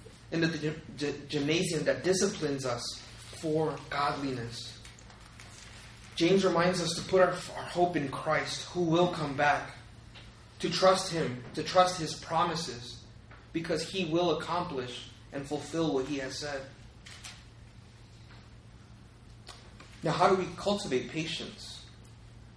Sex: male